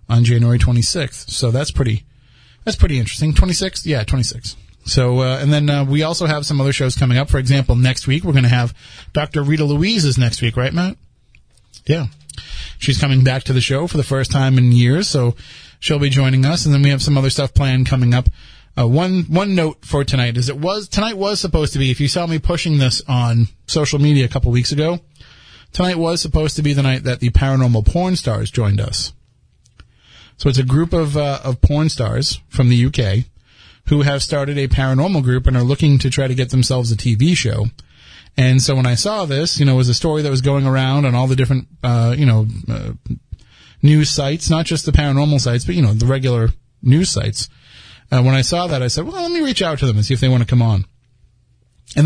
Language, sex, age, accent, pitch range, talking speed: English, male, 30-49, American, 120-150 Hz, 235 wpm